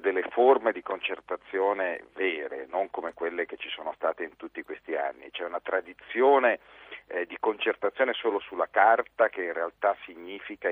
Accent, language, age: native, Italian, 50-69